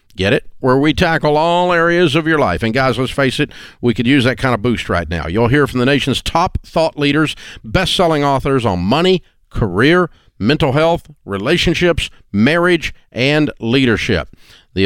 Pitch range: 110-150 Hz